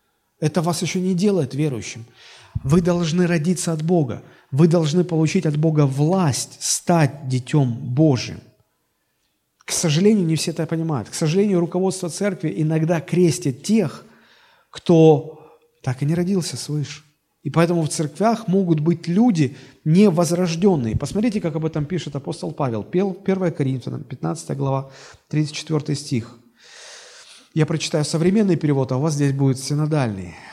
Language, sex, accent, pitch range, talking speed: Russian, male, native, 145-185 Hz, 140 wpm